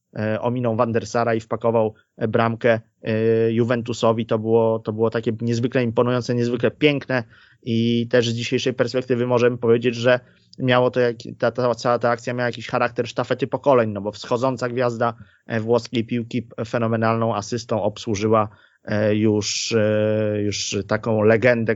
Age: 30-49